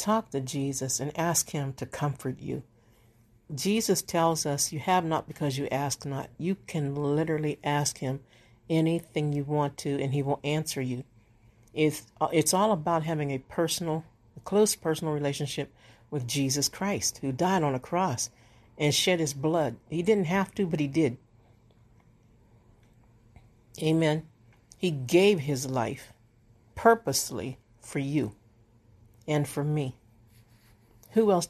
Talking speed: 140 wpm